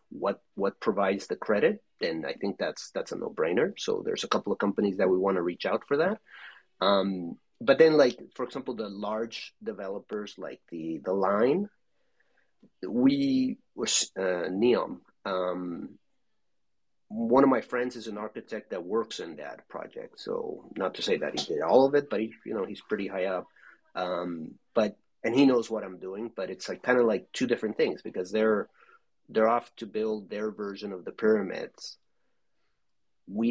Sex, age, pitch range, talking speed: male, 30-49, 105-145 Hz, 185 wpm